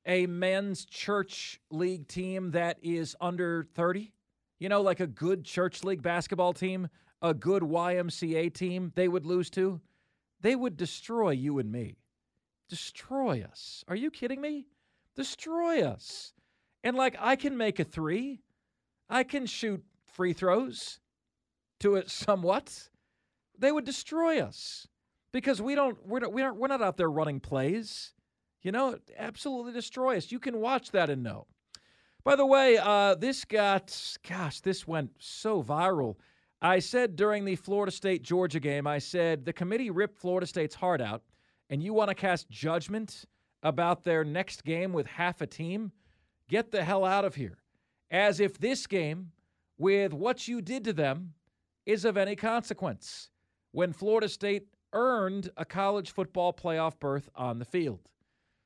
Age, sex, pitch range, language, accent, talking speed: 40-59, male, 170-220 Hz, English, American, 160 wpm